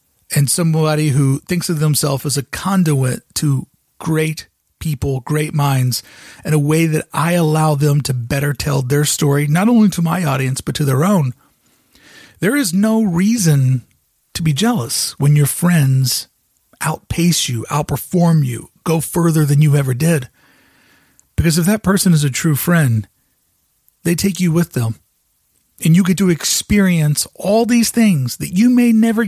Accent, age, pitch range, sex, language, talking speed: American, 40-59, 140-180 Hz, male, English, 165 wpm